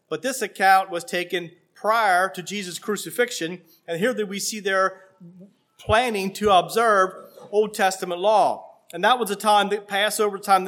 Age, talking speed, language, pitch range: 40-59, 150 wpm, English, 175-215 Hz